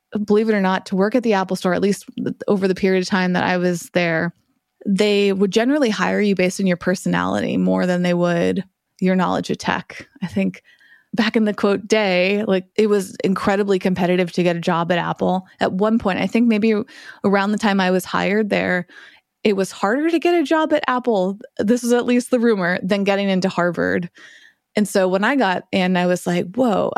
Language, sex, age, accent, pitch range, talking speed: English, female, 20-39, American, 180-215 Hz, 220 wpm